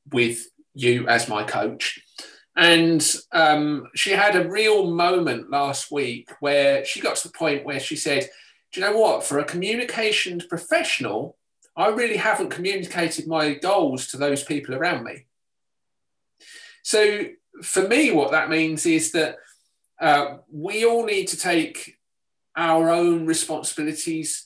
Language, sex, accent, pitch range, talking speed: English, male, British, 150-225 Hz, 145 wpm